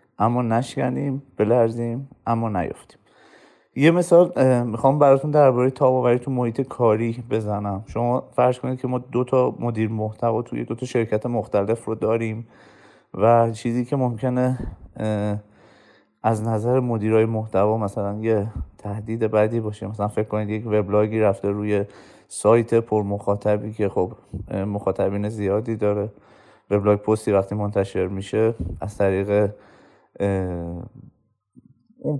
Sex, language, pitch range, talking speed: male, Persian, 100-120 Hz, 125 wpm